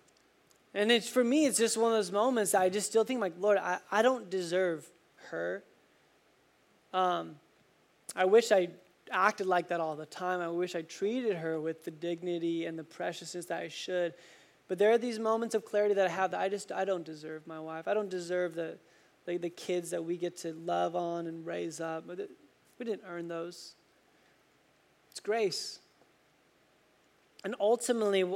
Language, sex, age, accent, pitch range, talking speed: English, male, 20-39, American, 175-210 Hz, 185 wpm